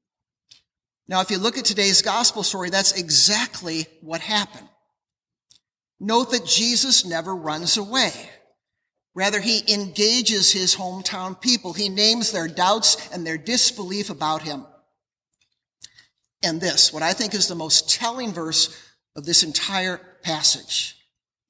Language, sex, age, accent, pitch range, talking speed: English, male, 50-69, American, 155-205 Hz, 130 wpm